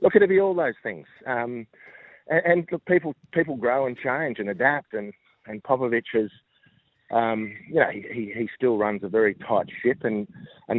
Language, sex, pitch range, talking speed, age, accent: English, male, 105-130 Hz, 195 wpm, 40-59, Australian